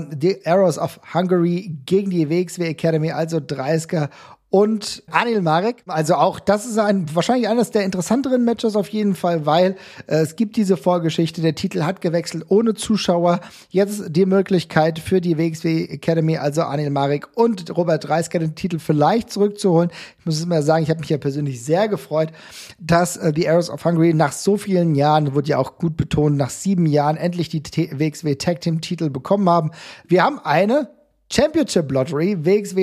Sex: male